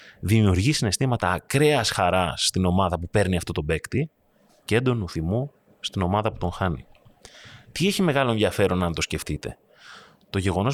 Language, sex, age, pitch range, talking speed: Greek, male, 30-49, 90-130 Hz, 155 wpm